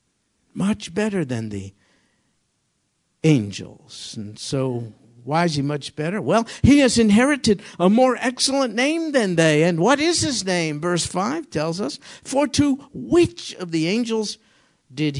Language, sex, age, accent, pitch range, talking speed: English, male, 60-79, American, 150-215 Hz, 150 wpm